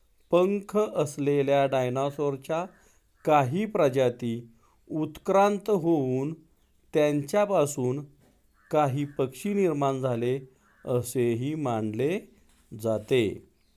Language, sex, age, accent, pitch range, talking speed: Marathi, male, 50-69, native, 125-155 Hz, 45 wpm